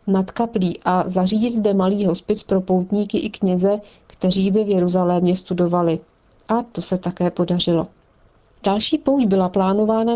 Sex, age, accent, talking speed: female, 40-59, native, 150 wpm